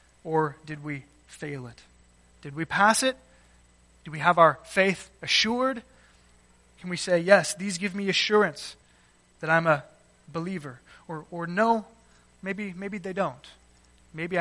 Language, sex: English, male